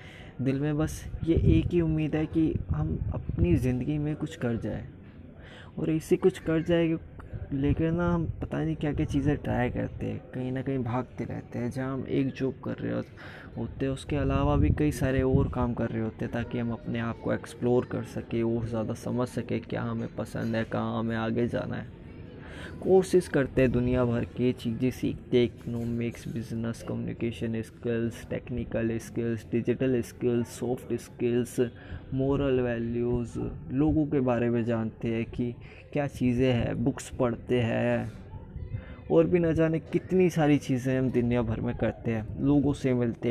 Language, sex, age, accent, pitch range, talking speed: Hindi, male, 20-39, native, 115-135 Hz, 175 wpm